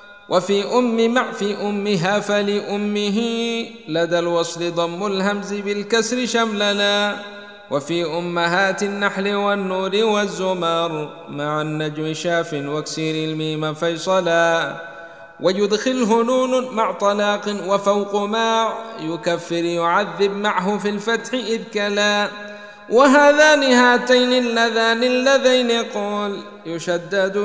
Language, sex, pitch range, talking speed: Arabic, male, 175-220 Hz, 90 wpm